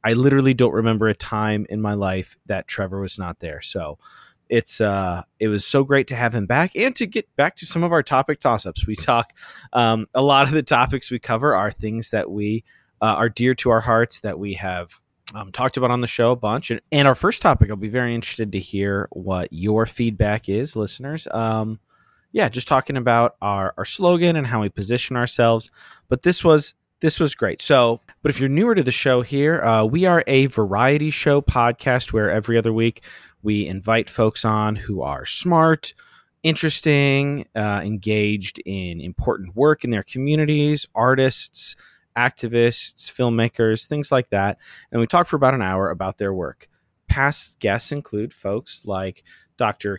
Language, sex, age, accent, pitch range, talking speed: English, male, 20-39, American, 105-140 Hz, 190 wpm